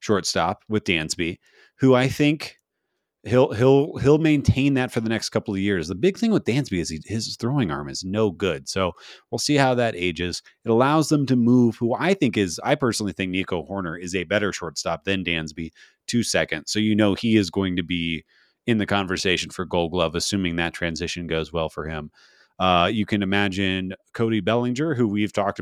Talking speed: 205 wpm